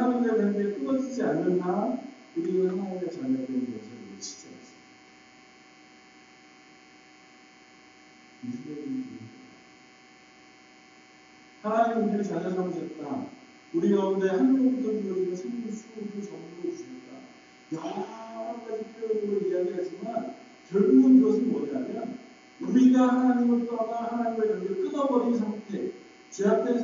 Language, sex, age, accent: Korean, male, 50-69, native